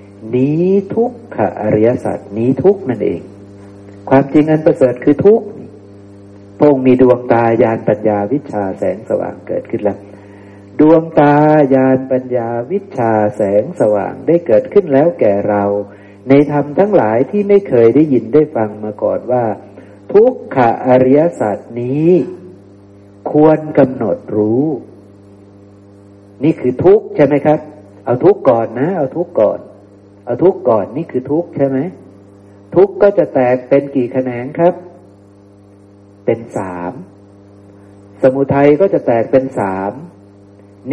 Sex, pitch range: male, 100-140 Hz